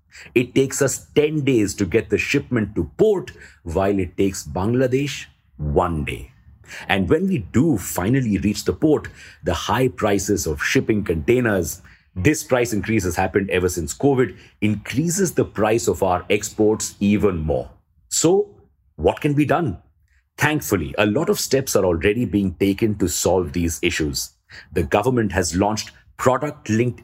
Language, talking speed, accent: English, 155 wpm, Indian